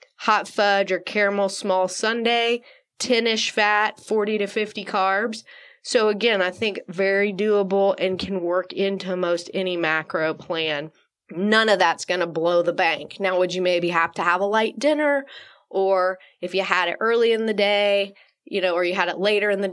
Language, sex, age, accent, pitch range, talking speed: English, female, 20-39, American, 175-210 Hz, 190 wpm